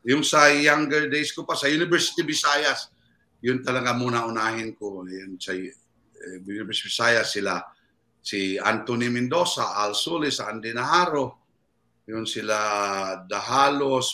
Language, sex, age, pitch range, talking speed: English, male, 50-69, 110-135 Hz, 120 wpm